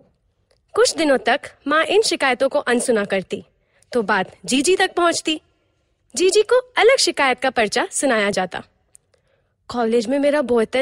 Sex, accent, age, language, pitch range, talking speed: female, native, 20-39, Hindi, 245-335 Hz, 145 wpm